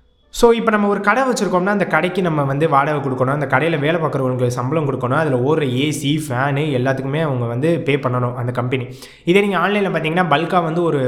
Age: 20-39